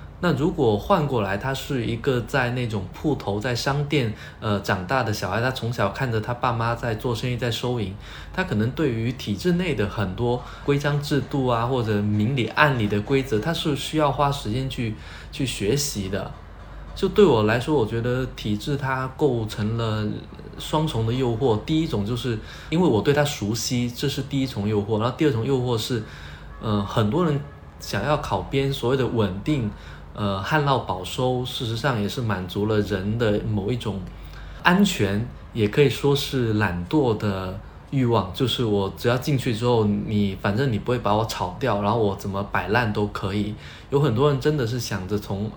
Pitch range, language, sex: 105-135 Hz, Chinese, male